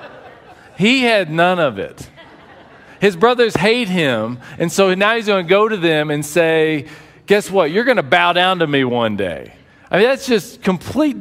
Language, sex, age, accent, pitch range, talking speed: English, male, 40-59, American, 145-200 Hz, 180 wpm